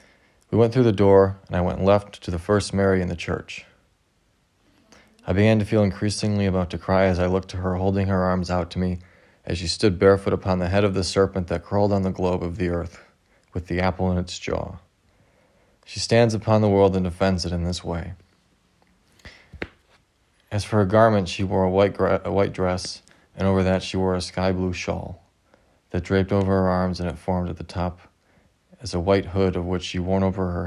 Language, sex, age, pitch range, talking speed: English, male, 30-49, 90-100 Hz, 215 wpm